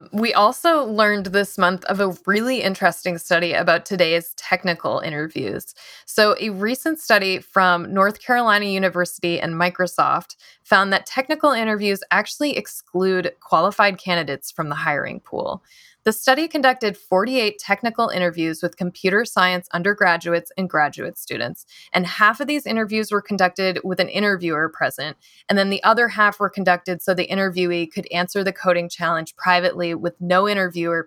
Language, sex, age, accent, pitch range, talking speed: English, female, 20-39, American, 180-220 Hz, 155 wpm